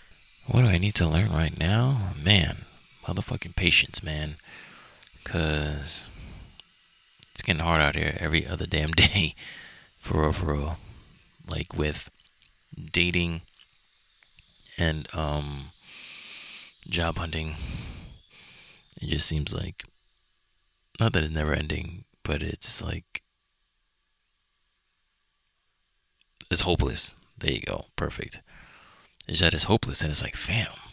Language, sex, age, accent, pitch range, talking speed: English, male, 30-49, American, 75-90 Hz, 115 wpm